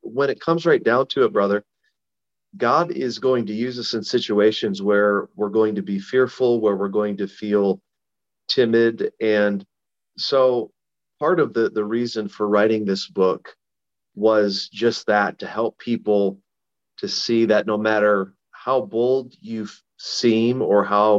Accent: American